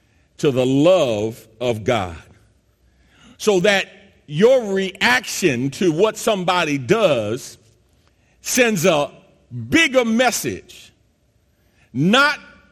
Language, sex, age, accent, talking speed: English, male, 50-69, American, 85 wpm